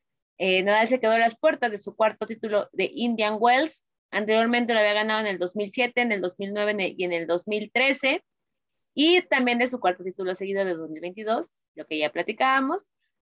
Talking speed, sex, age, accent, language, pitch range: 195 wpm, female, 30-49, Mexican, Spanish, 185-245 Hz